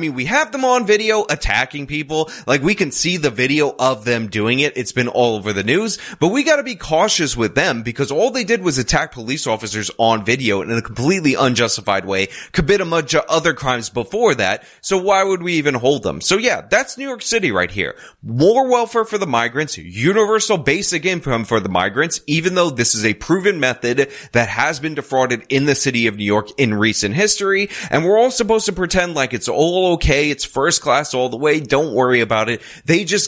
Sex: male